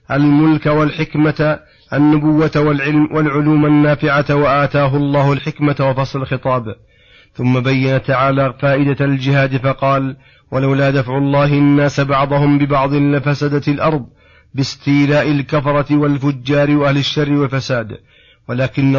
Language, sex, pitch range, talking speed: Arabic, male, 135-150 Hz, 100 wpm